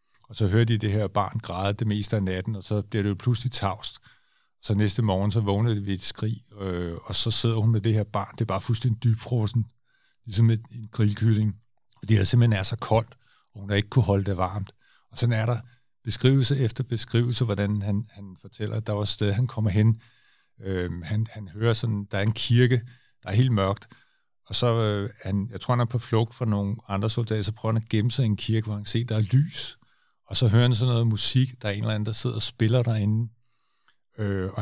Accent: native